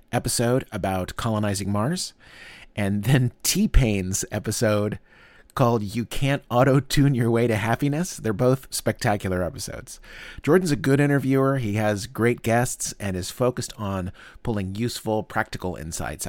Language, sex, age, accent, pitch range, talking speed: English, male, 30-49, American, 95-125 Hz, 135 wpm